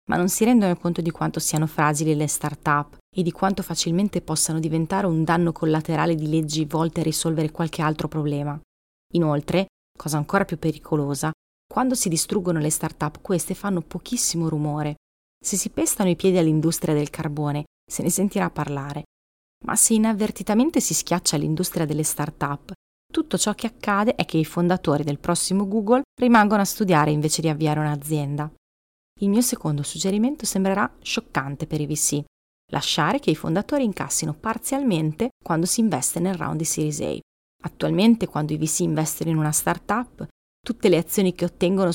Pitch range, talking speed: 150-195 Hz, 165 wpm